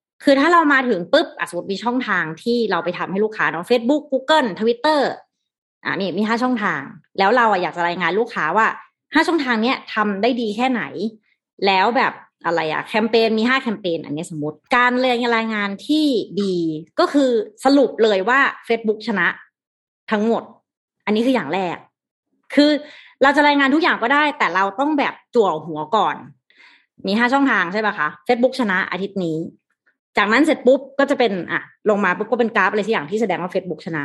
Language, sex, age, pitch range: Thai, female, 30-49, 185-260 Hz